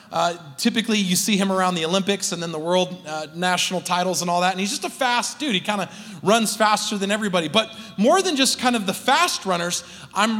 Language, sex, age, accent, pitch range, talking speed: English, male, 30-49, American, 190-230 Hz, 235 wpm